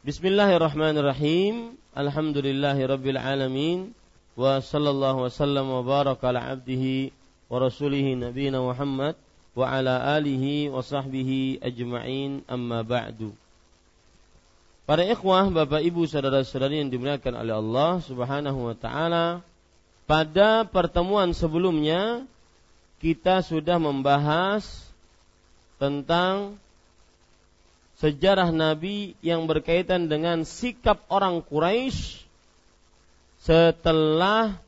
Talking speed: 90 wpm